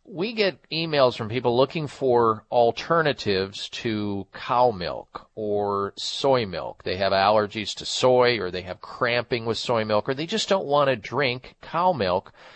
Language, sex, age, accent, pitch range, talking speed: English, male, 40-59, American, 110-130 Hz, 165 wpm